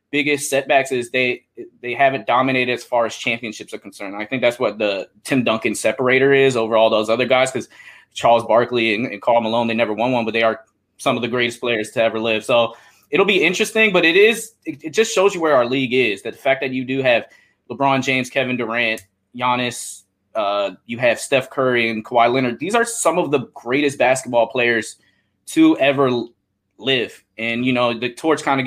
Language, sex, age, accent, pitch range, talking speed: English, male, 20-39, American, 120-160 Hz, 215 wpm